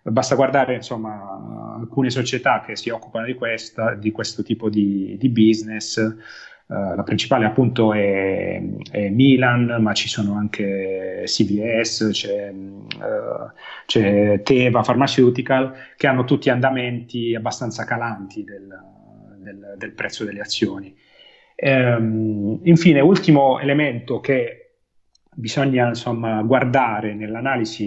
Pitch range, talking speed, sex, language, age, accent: 110-130 Hz, 120 wpm, male, Italian, 30-49, native